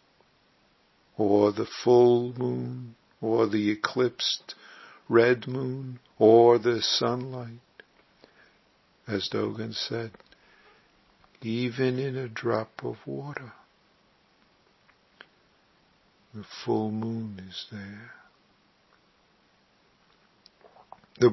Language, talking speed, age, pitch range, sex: English, 75 wpm, 50-69, 105-120 Hz, male